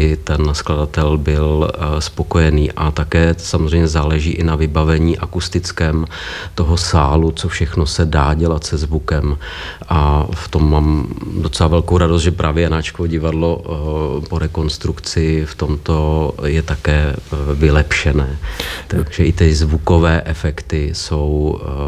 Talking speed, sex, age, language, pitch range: 125 wpm, male, 40-59, Czech, 75-85 Hz